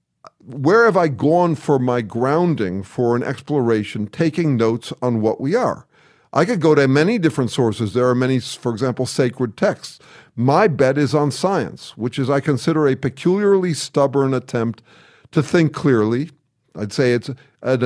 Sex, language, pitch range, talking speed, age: male, English, 120-160 Hz, 170 wpm, 50-69